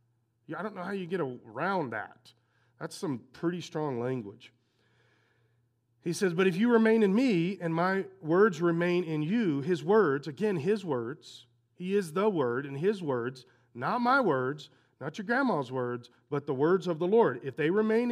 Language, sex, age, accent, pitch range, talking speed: English, male, 40-59, American, 130-215 Hz, 180 wpm